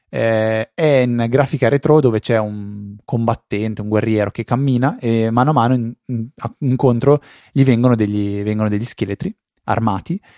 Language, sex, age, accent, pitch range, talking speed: Italian, male, 20-39, native, 105-120 Hz, 140 wpm